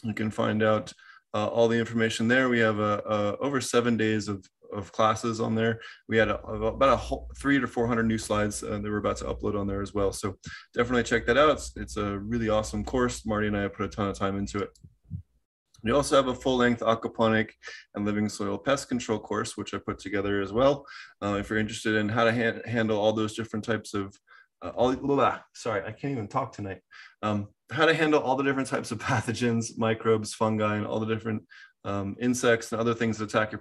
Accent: American